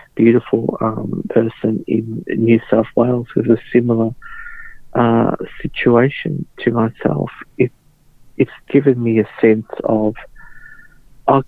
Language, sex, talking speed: English, male, 115 wpm